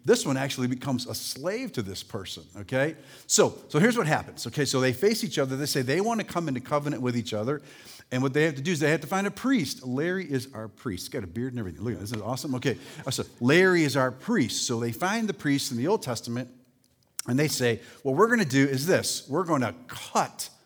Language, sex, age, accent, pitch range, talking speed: English, male, 40-59, American, 120-155 Hz, 260 wpm